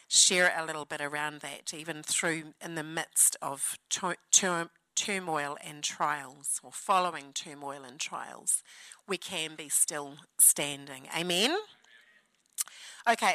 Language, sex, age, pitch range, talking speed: English, female, 40-59, 165-265 Hz, 130 wpm